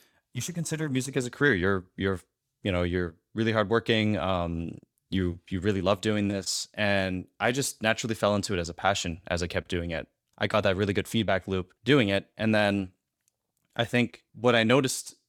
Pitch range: 90-110 Hz